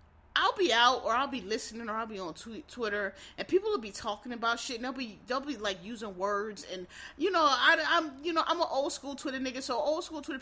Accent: American